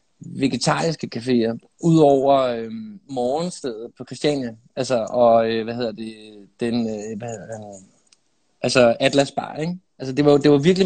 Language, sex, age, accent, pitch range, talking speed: Danish, male, 20-39, native, 135-165 Hz, 165 wpm